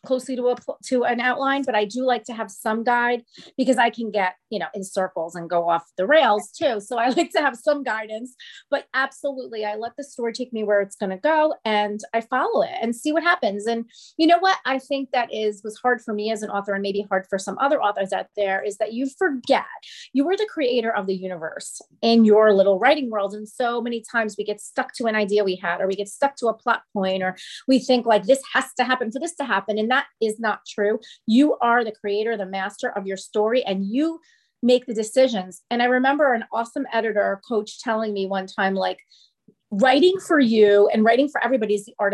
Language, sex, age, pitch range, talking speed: English, female, 30-49, 210-270 Hz, 240 wpm